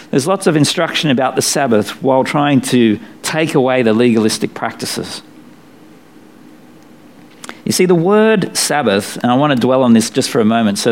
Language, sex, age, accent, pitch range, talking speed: English, male, 50-69, Australian, 110-155 Hz, 175 wpm